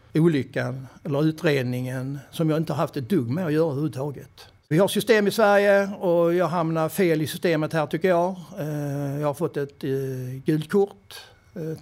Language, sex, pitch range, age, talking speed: English, male, 140-165 Hz, 60-79, 180 wpm